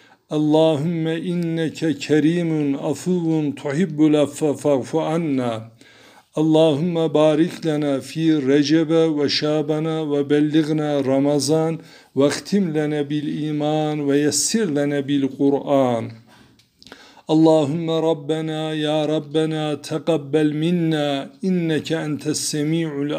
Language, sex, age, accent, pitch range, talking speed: Turkish, male, 60-79, native, 145-160 Hz, 90 wpm